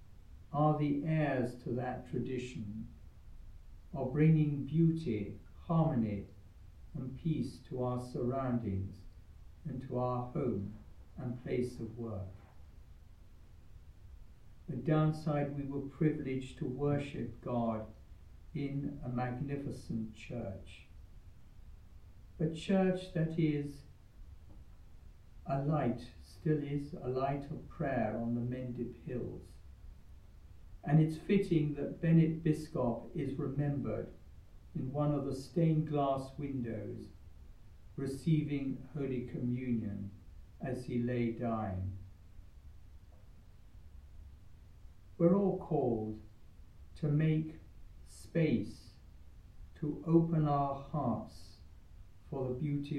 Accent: British